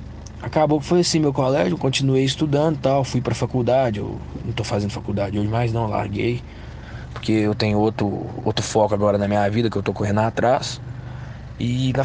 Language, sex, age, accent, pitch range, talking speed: Portuguese, male, 20-39, Brazilian, 105-125 Hz, 195 wpm